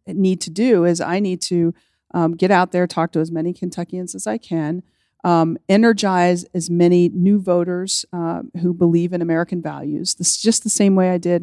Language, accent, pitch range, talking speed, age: English, American, 180-225 Hz, 205 wpm, 40-59